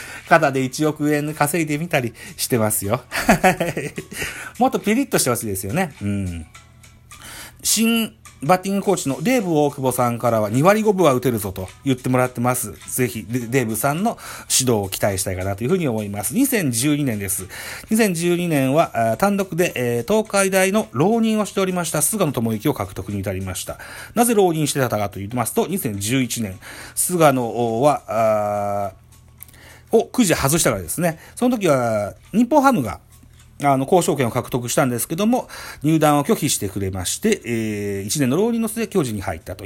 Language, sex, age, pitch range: Japanese, male, 40-59, 110-185 Hz